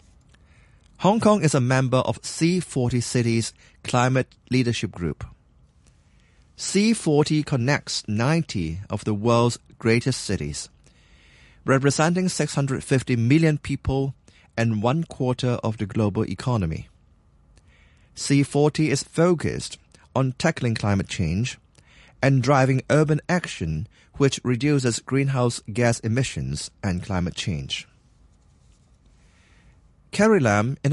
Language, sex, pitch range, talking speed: English, male, 105-140 Hz, 100 wpm